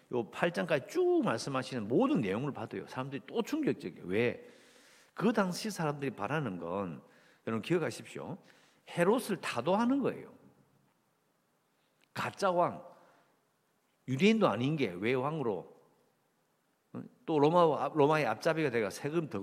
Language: English